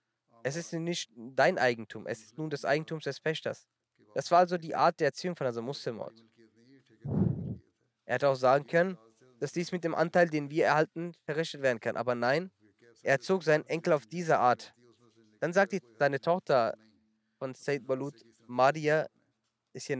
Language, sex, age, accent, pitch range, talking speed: German, male, 20-39, German, 115-160 Hz, 175 wpm